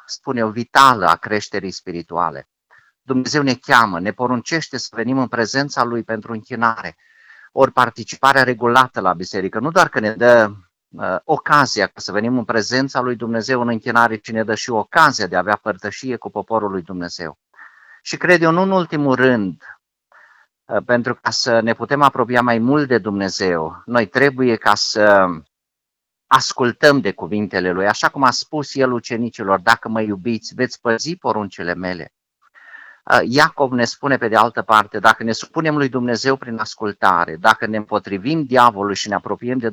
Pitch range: 100-130 Hz